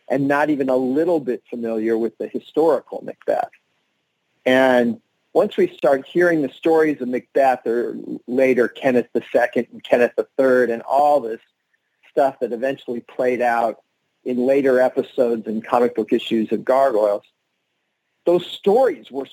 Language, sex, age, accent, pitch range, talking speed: English, male, 40-59, American, 120-160 Hz, 150 wpm